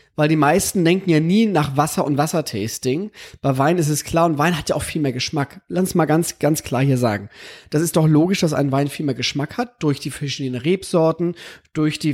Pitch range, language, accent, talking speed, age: 145-185 Hz, German, German, 230 wpm, 30-49